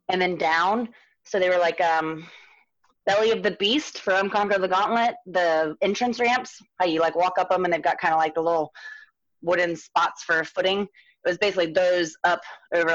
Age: 20-39